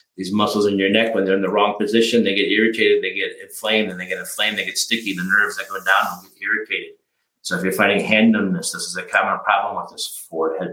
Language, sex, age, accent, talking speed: English, male, 50-69, American, 265 wpm